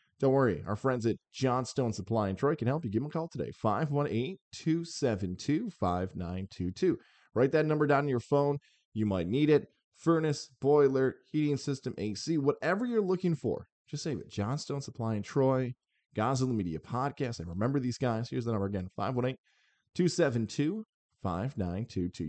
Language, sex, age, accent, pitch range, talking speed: English, male, 20-39, American, 105-140 Hz, 155 wpm